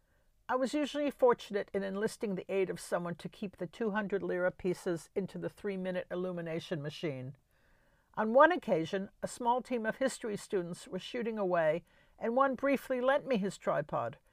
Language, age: English, 60-79